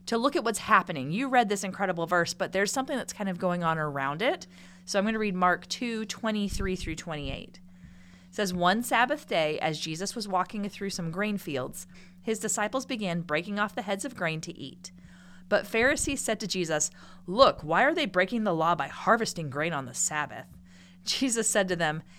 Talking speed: 205 wpm